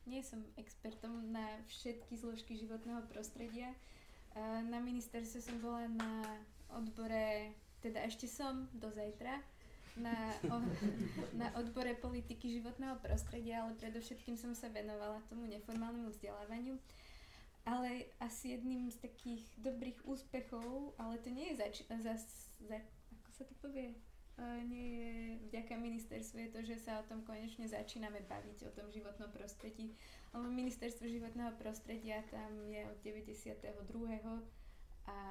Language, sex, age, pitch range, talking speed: Slovak, female, 20-39, 210-240 Hz, 130 wpm